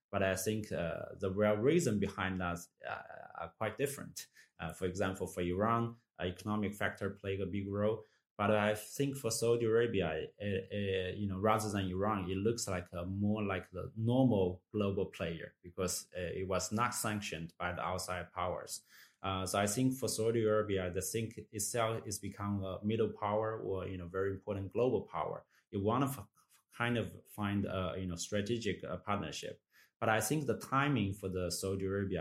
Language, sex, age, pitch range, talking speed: English, male, 20-39, 95-105 Hz, 190 wpm